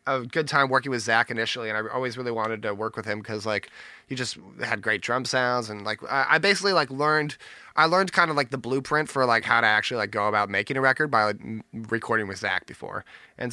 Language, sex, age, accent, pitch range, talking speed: English, male, 20-39, American, 110-130 Hz, 250 wpm